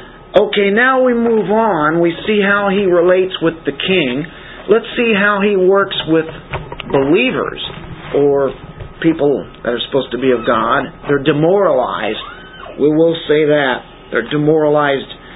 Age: 50-69